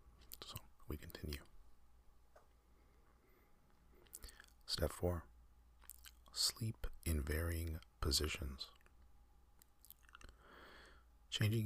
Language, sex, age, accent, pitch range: English, male, 40-59, American, 65-85 Hz